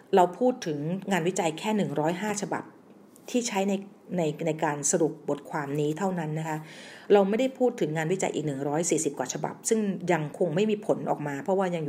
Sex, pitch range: female, 150-200 Hz